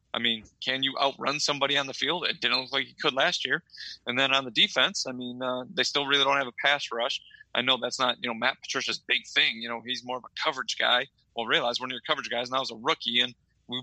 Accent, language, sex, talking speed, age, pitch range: American, English, male, 280 wpm, 20-39, 120-150 Hz